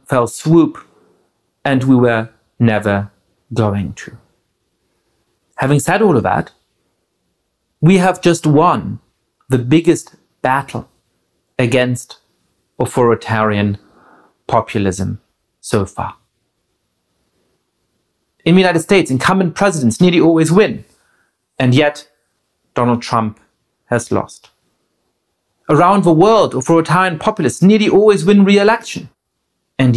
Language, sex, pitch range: English, male, 115-170 Hz